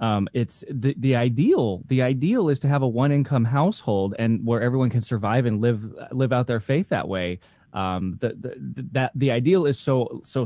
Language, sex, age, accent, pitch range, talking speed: English, male, 20-39, American, 115-155 Hz, 195 wpm